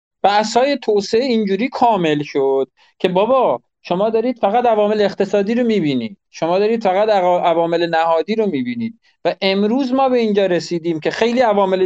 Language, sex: Persian, male